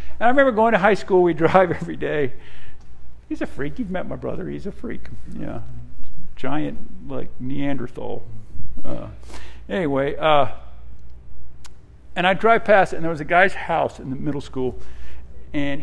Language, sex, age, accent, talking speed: English, male, 50-69, American, 165 wpm